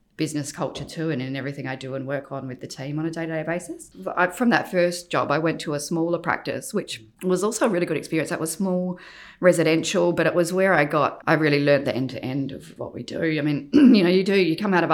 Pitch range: 150-180 Hz